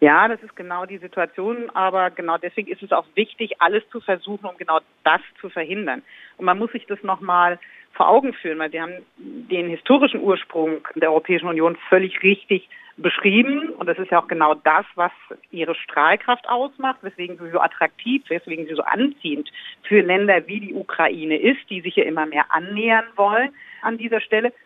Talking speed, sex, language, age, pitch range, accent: 190 wpm, female, German, 50-69, 170-220 Hz, German